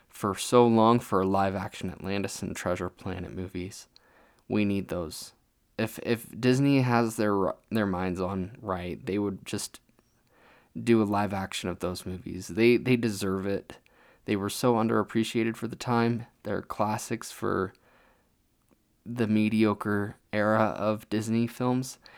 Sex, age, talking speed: male, 20-39, 140 wpm